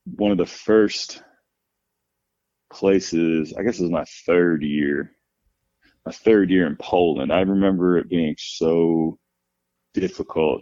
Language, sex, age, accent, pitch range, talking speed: English, male, 20-39, American, 75-95 Hz, 130 wpm